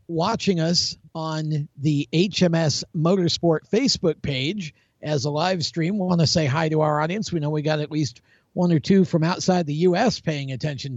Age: 50-69